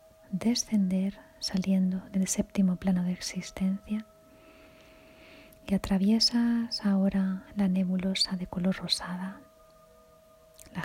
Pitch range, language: 185-220 Hz, Spanish